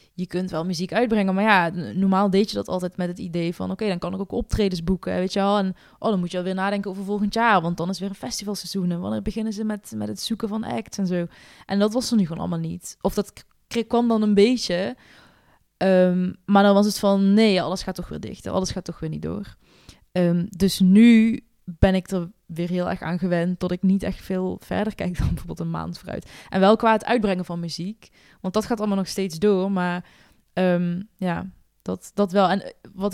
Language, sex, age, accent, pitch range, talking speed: Dutch, female, 20-39, Dutch, 175-200 Hz, 230 wpm